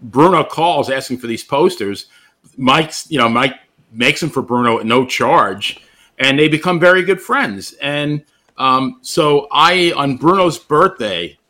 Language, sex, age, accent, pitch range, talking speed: English, male, 40-59, American, 115-145 Hz, 155 wpm